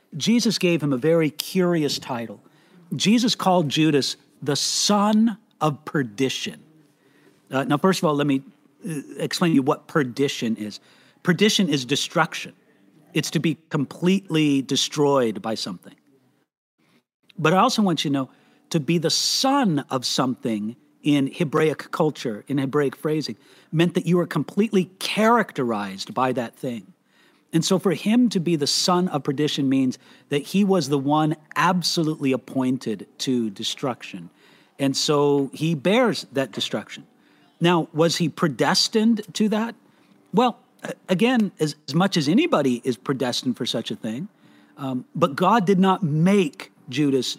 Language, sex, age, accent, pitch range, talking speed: English, male, 50-69, American, 135-175 Hz, 150 wpm